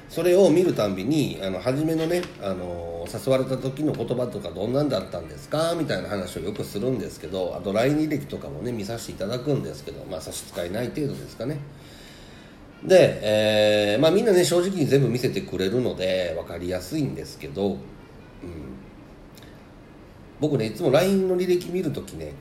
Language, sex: Japanese, male